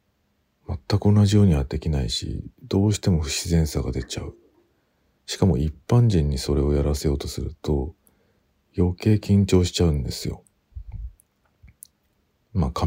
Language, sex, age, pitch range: Japanese, male, 50-69, 70-100 Hz